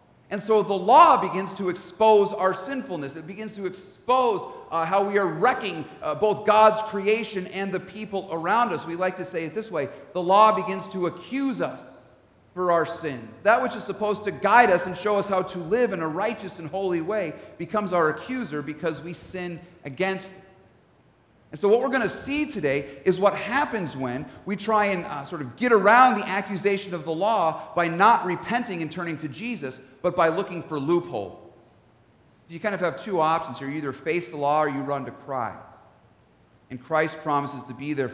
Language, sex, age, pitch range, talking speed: English, male, 40-59, 150-200 Hz, 205 wpm